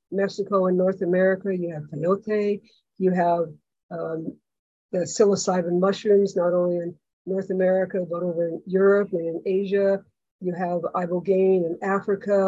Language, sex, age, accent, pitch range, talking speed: English, female, 50-69, American, 175-200 Hz, 145 wpm